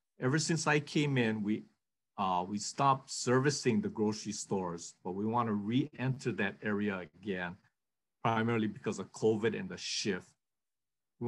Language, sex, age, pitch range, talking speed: English, male, 50-69, 105-130 Hz, 150 wpm